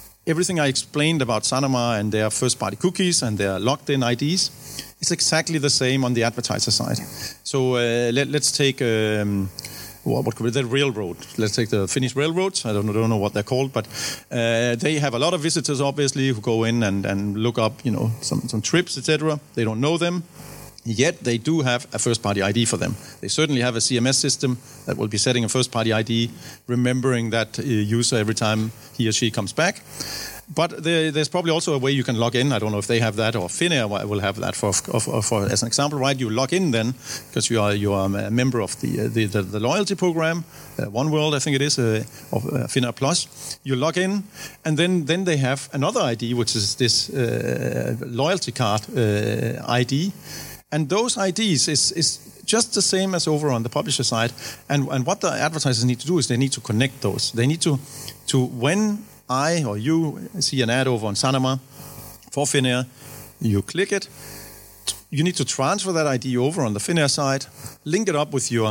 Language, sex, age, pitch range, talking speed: Finnish, male, 50-69, 115-150 Hz, 205 wpm